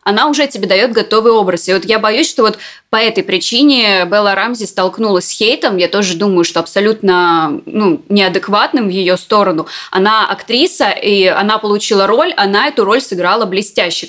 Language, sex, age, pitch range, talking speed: Russian, female, 20-39, 190-230 Hz, 175 wpm